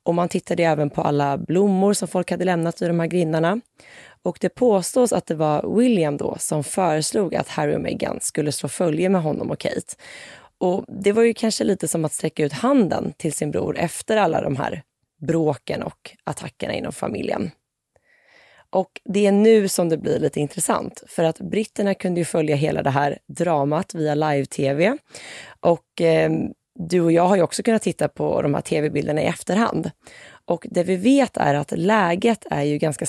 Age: 20-39